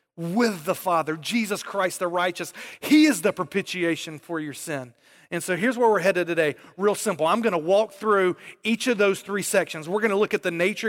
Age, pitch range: 30-49, 160-215 Hz